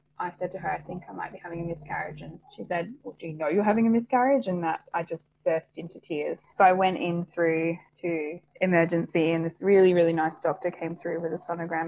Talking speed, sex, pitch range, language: 240 wpm, female, 165-190 Hz, English